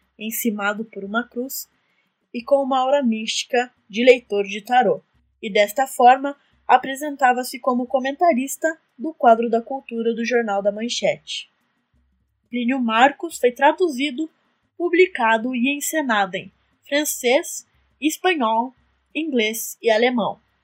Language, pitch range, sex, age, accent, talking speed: Portuguese, 210-265 Hz, female, 10-29, Brazilian, 115 wpm